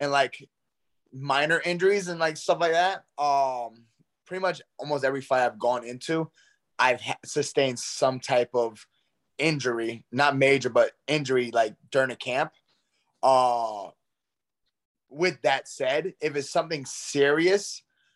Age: 20-39